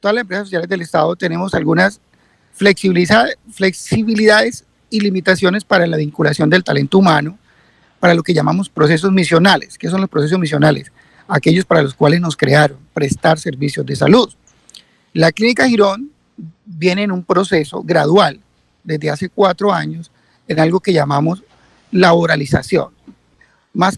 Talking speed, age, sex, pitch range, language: 145 wpm, 40-59, male, 155-195 Hz, Spanish